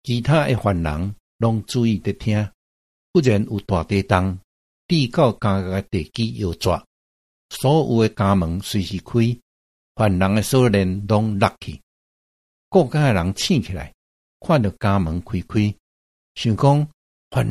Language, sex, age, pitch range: Chinese, male, 60-79, 80-115 Hz